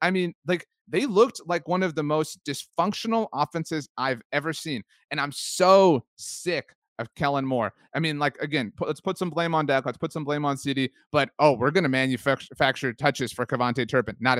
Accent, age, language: American, 30-49, English